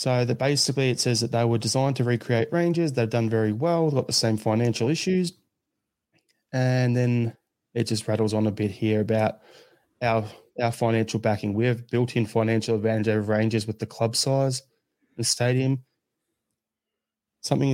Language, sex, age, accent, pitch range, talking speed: English, male, 20-39, Australian, 110-130 Hz, 170 wpm